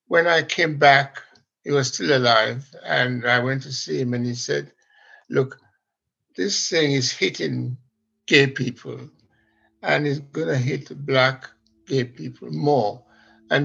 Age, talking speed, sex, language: 60-79, 150 wpm, male, English